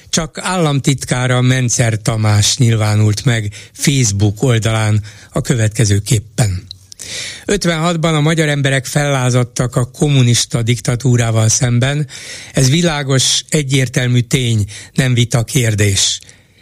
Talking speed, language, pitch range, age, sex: 100 wpm, Hungarian, 115-150 Hz, 60-79, male